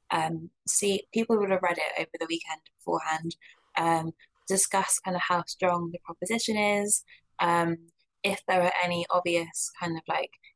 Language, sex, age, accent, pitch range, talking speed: English, female, 20-39, British, 170-195 Hz, 165 wpm